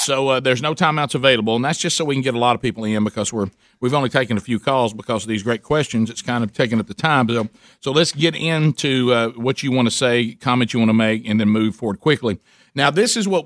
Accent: American